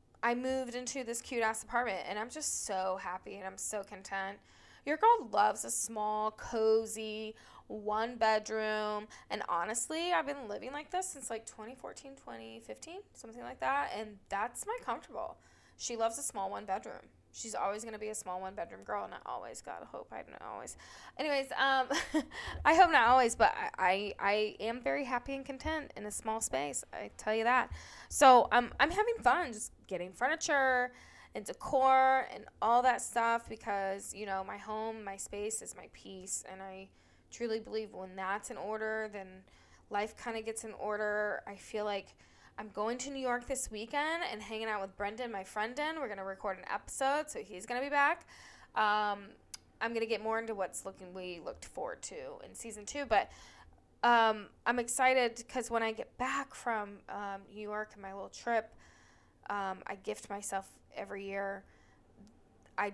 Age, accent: 10-29, American